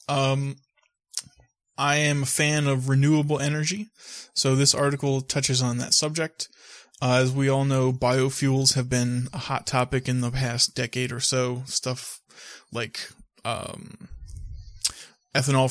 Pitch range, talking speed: 125-140 Hz, 140 wpm